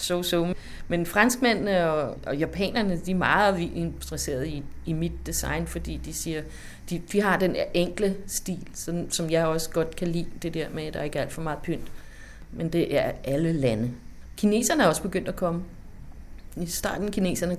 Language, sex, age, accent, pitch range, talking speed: Danish, female, 30-49, native, 160-190 Hz, 200 wpm